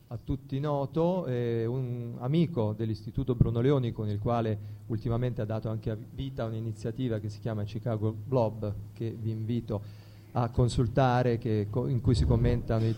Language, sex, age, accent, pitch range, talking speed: Italian, male, 40-59, native, 110-130 Hz, 160 wpm